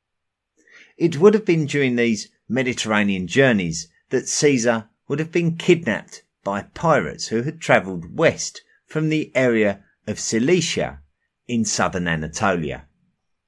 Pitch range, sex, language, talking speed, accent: 85-130 Hz, male, English, 125 wpm, British